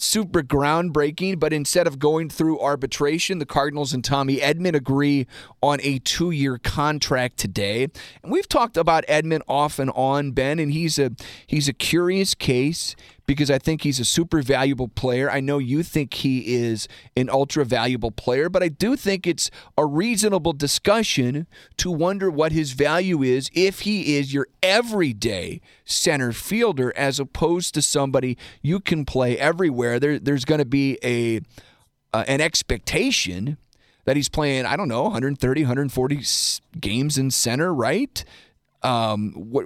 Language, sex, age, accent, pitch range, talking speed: English, male, 40-59, American, 125-160 Hz, 155 wpm